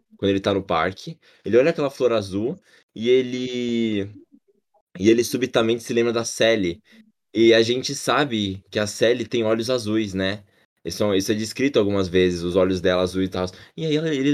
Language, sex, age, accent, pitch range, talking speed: Portuguese, male, 20-39, Brazilian, 100-130 Hz, 190 wpm